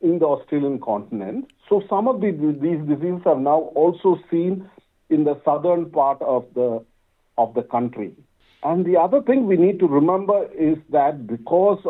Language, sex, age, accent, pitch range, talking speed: Malayalam, male, 50-69, native, 130-190 Hz, 170 wpm